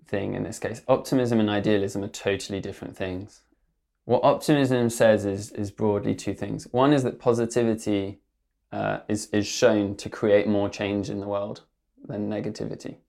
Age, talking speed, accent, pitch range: 20-39, 165 wpm, British, 100-115 Hz